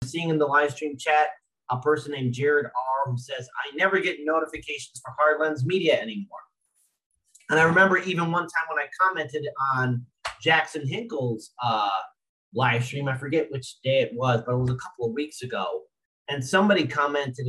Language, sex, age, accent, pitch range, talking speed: English, male, 30-49, American, 140-195 Hz, 180 wpm